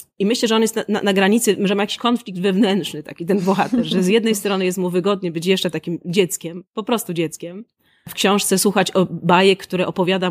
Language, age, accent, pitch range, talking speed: Polish, 30-49, native, 180-205 Hz, 215 wpm